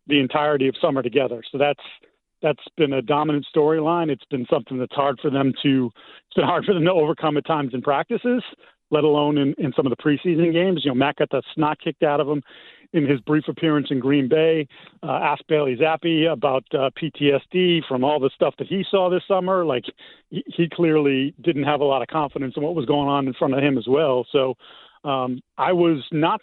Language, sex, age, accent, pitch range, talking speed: English, male, 40-59, American, 135-165 Hz, 225 wpm